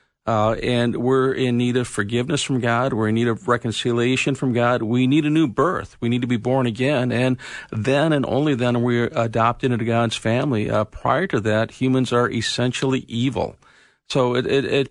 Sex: male